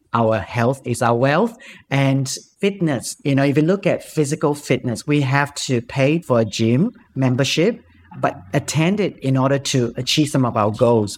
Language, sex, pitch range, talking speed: English, male, 120-150 Hz, 185 wpm